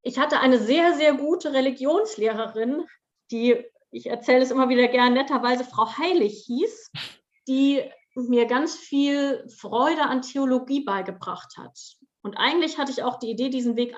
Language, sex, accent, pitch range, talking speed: German, female, German, 220-260 Hz, 155 wpm